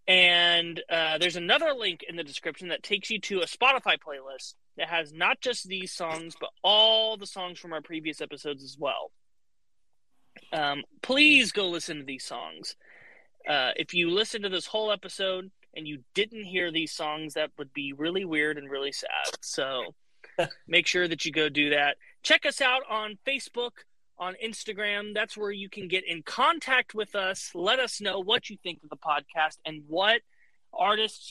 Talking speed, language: 185 wpm, English